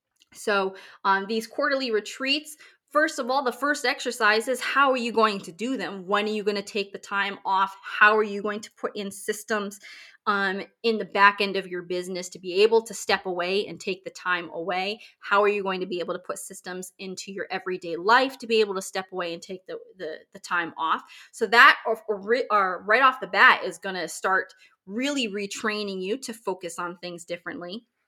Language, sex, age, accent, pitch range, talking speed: English, female, 20-39, American, 190-245 Hz, 220 wpm